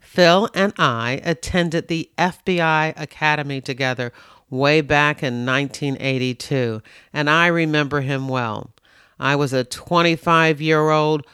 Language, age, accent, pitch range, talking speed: English, 50-69, American, 135-170 Hz, 110 wpm